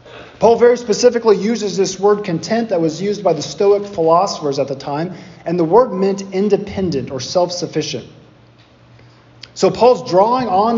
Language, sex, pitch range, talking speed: English, male, 160-215 Hz, 155 wpm